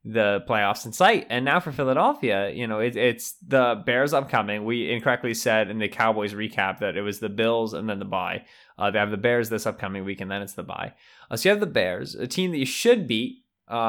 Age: 20-39